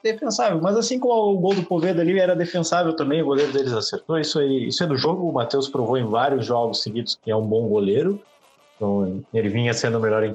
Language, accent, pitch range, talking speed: Portuguese, Brazilian, 105-140 Hz, 240 wpm